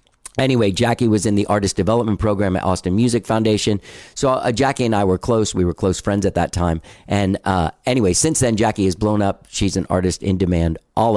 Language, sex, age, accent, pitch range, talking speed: English, male, 50-69, American, 90-115 Hz, 220 wpm